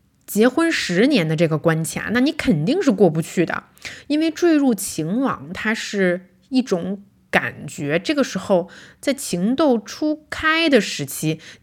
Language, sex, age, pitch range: Chinese, female, 20-39, 180-265 Hz